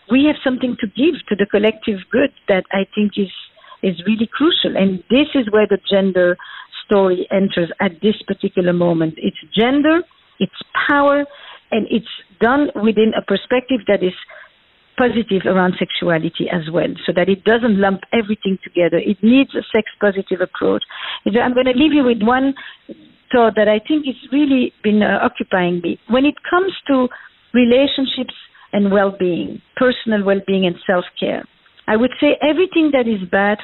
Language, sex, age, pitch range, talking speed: English, female, 50-69, 195-260 Hz, 160 wpm